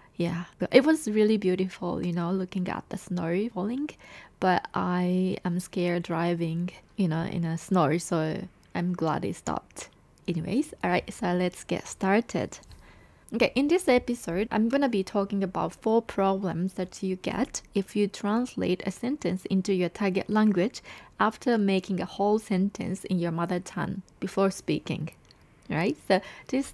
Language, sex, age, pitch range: Japanese, female, 20-39, 175-215 Hz